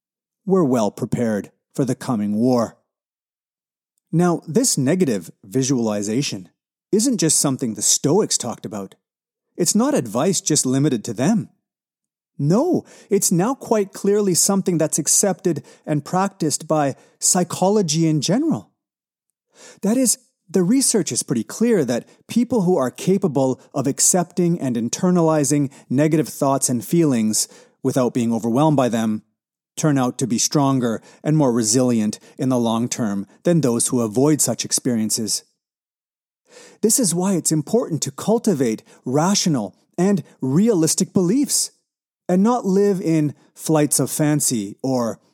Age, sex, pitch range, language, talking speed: 30-49, male, 125-190 Hz, English, 135 wpm